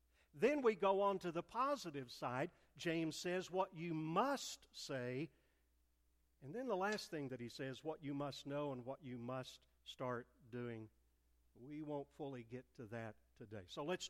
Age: 50-69